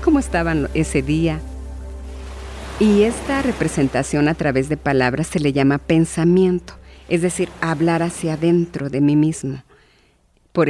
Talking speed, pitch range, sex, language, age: 135 wpm, 140-180 Hz, female, Spanish, 50-69